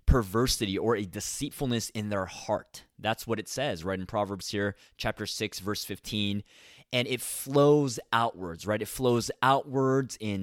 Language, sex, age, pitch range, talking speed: English, male, 20-39, 100-135 Hz, 160 wpm